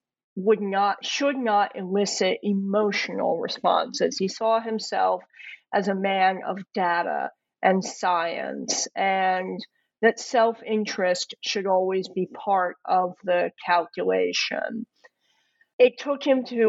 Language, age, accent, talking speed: English, 50-69, American, 110 wpm